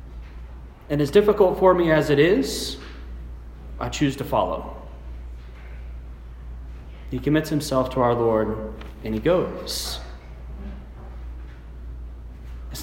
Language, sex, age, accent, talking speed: English, male, 30-49, American, 105 wpm